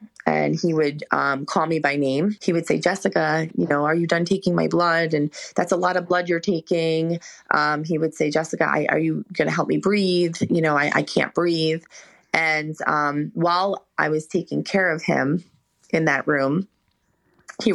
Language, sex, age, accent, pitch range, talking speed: English, female, 30-49, American, 145-175 Hz, 200 wpm